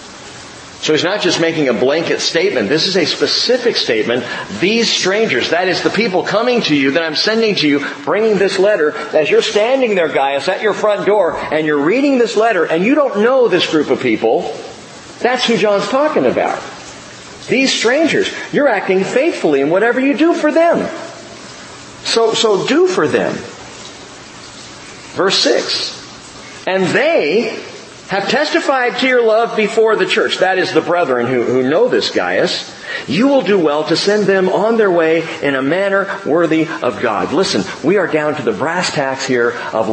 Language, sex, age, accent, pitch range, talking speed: English, male, 50-69, American, 160-255 Hz, 180 wpm